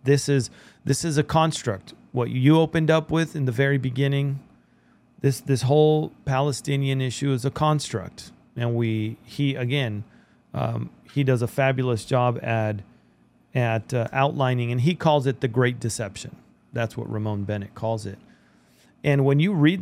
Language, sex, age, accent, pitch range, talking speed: English, male, 40-59, American, 110-140 Hz, 165 wpm